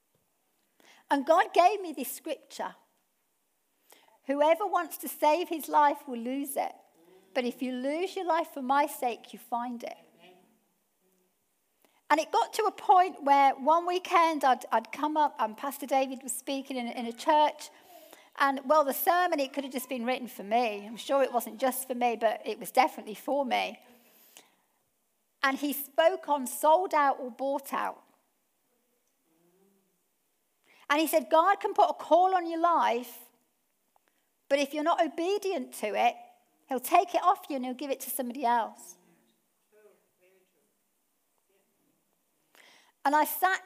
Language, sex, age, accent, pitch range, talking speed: English, female, 50-69, British, 245-325 Hz, 160 wpm